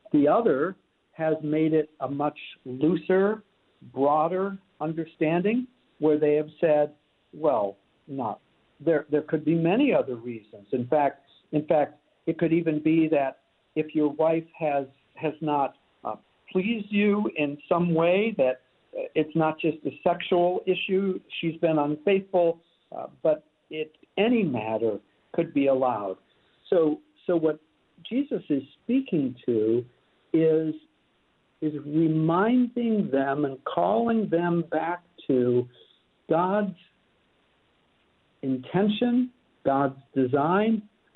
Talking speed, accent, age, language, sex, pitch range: 120 wpm, American, 60-79, English, male, 135-170 Hz